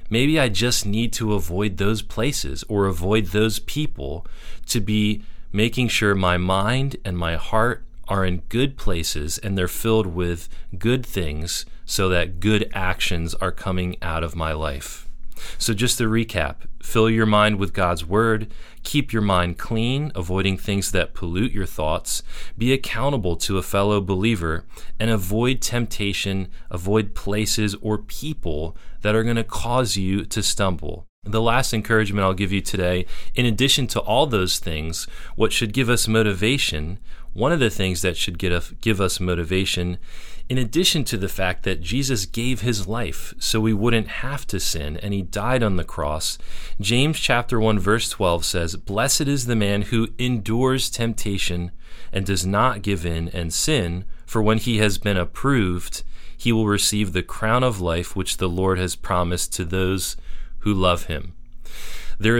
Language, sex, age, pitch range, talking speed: English, male, 30-49, 90-115 Hz, 170 wpm